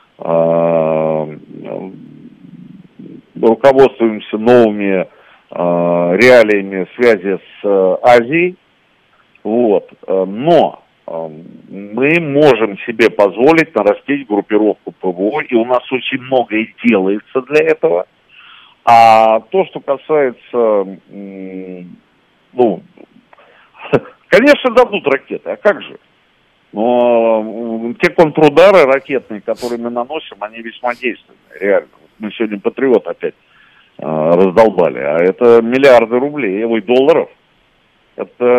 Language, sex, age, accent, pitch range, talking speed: Russian, male, 50-69, native, 95-140 Hz, 90 wpm